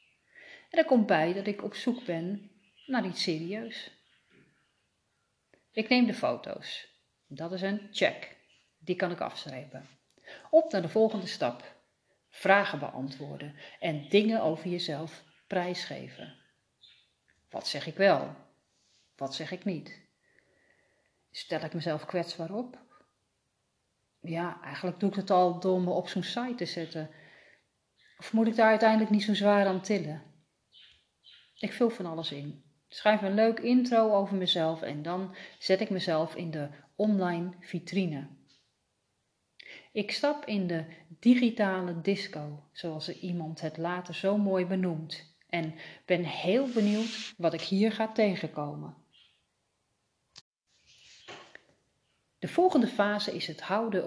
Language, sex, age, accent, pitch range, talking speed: Dutch, female, 40-59, Dutch, 160-210 Hz, 135 wpm